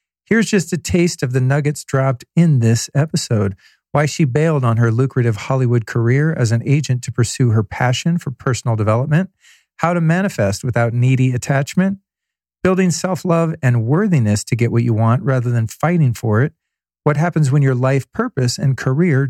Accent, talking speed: American, 180 wpm